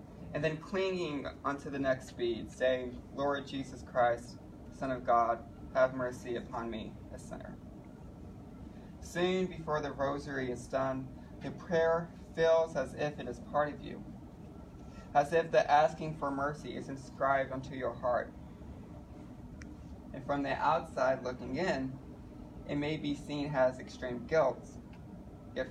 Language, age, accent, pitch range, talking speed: English, 20-39, American, 130-150 Hz, 140 wpm